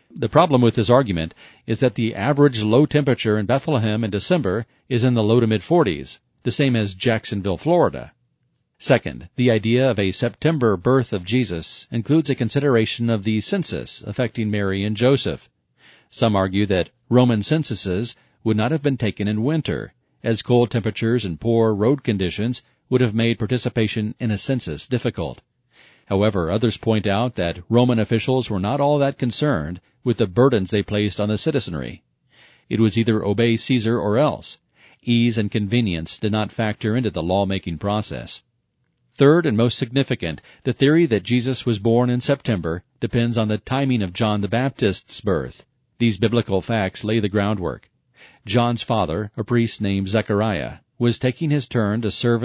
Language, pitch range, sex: English, 105-125 Hz, male